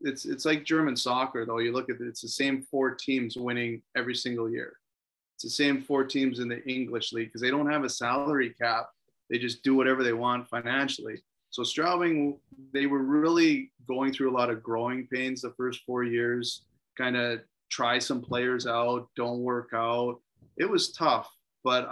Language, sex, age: English, male, 30-49